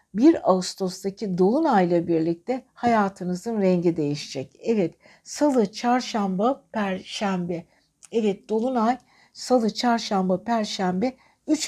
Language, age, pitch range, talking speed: Turkish, 60-79, 180-230 Hz, 85 wpm